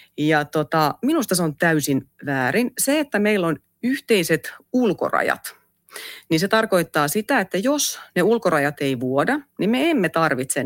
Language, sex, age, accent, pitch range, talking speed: Finnish, female, 30-49, native, 145-210 Hz, 150 wpm